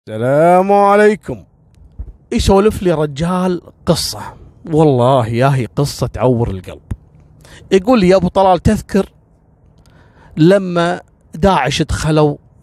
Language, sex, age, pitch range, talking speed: Arabic, male, 30-49, 130-200 Hz, 100 wpm